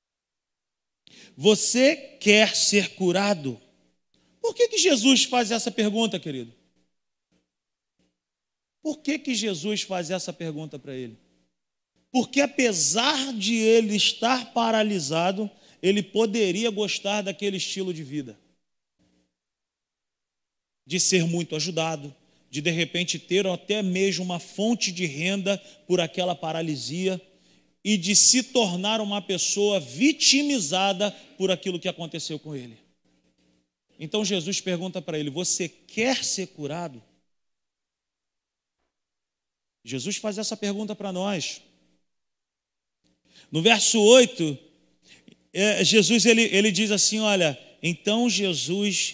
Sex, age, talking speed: male, 40-59, 105 wpm